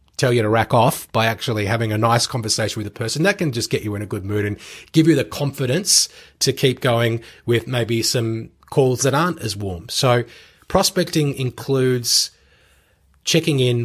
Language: English